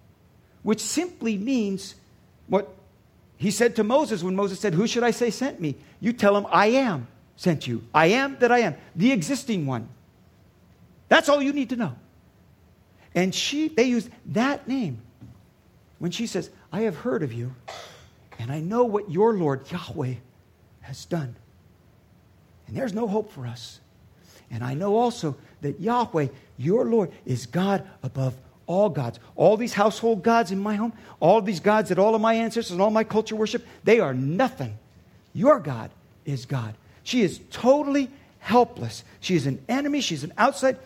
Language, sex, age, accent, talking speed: English, male, 50-69, American, 175 wpm